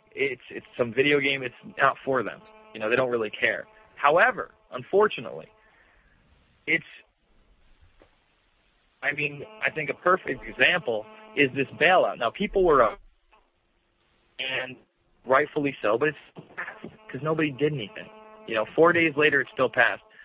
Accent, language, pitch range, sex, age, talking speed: American, English, 135-180 Hz, male, 40-59, 150 wpm